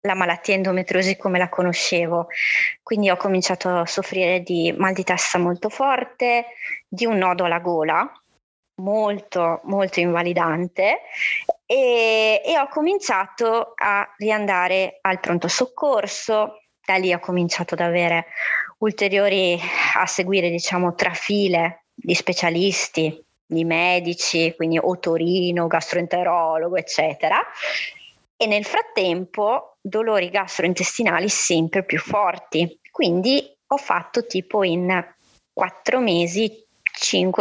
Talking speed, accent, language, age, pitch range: 115 wpm, native, Italian, 20-39, 175-215 Hz